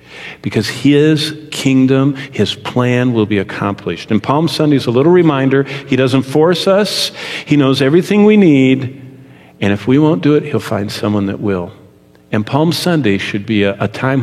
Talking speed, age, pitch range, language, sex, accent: 180 wpm, 50-69, 100-140 Hz, English, male, American